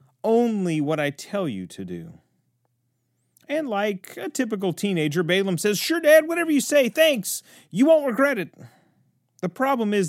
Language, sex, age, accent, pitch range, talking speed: English, male, 40-59, American, 150-215 Hz, 160 wpm